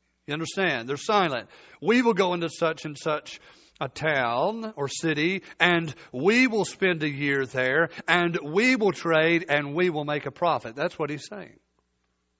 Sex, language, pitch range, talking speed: male, English, 155-215 Hz, 175 wpm